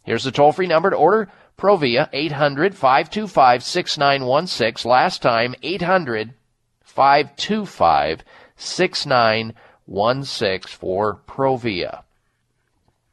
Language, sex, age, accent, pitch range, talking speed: English, male, 40-59, American, 115-155 Hz, 60 wpm